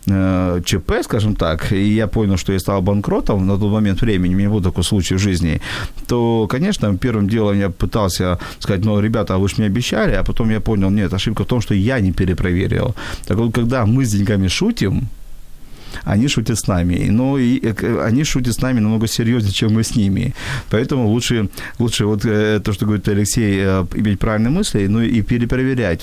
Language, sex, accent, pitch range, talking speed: Ukrainian, male, native, 95-120 Hz, 190 wpm